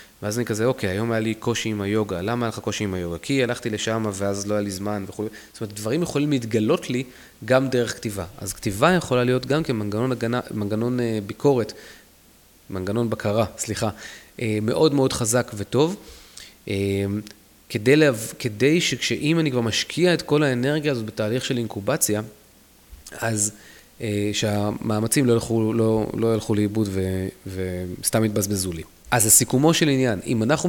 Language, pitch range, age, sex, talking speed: Hebrew, 105-130 Hz, 20-39, male, 155 wpm